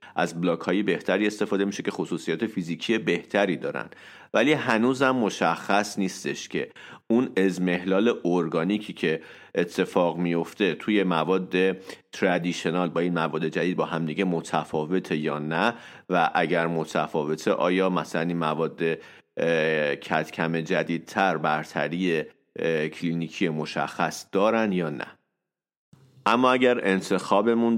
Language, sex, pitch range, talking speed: Persian, male, 85-105 Hz, 115 wpm